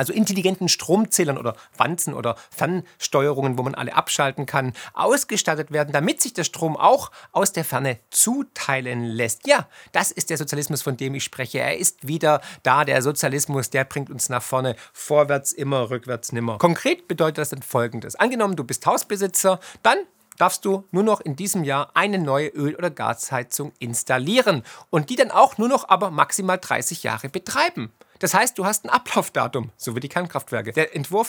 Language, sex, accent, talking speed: German, male, German, 180 wpm